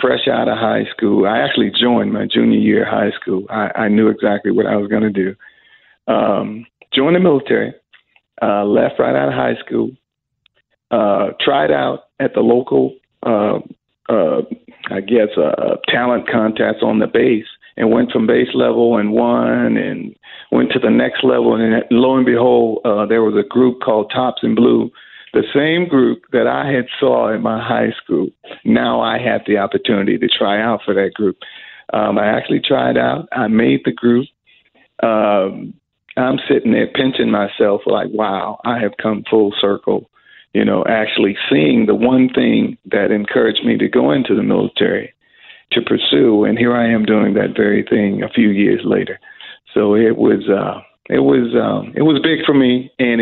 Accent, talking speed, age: American, 180 wpm, 50-69